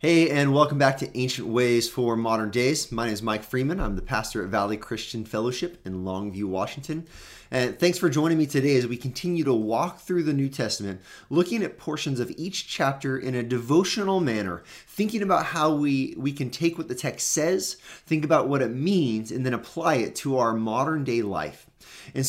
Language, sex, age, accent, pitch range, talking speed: English, male, 30-49, American, 115-155 Hz, 205 wpm